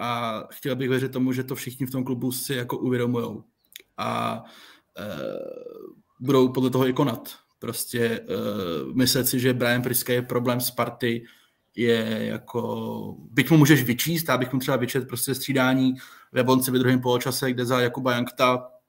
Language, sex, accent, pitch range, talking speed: Czech, male, native, 120-130 Hz, 170 wpm